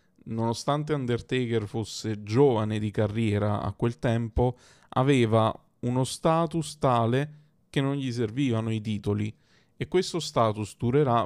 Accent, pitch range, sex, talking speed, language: native, 110-145 Hz, male, 125 wpm, Italian